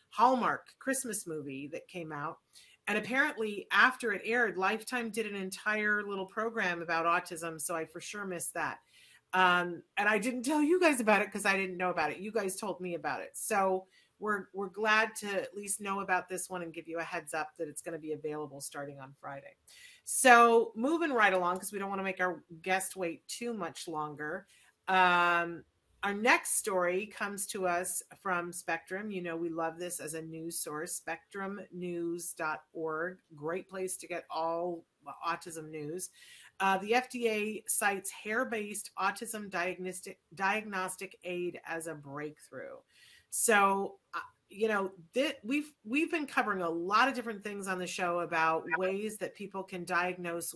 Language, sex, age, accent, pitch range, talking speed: English, female, 40-59, American, 170-210 Hz, 175 wpm